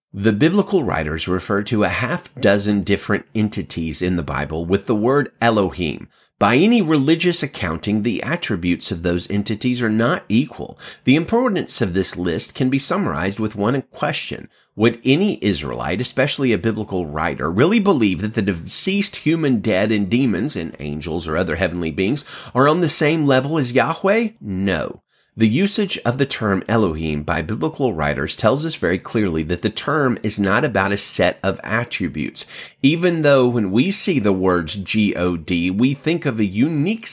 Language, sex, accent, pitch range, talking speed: English, male, American, 95-145 Hz, 170 wpm